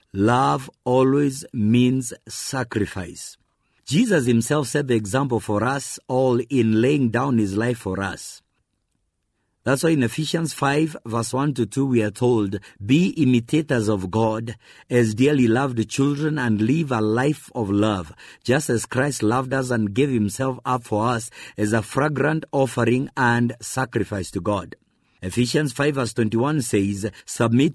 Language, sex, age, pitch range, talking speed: English, male, 50-69, 110-135 Hz, 150 wpm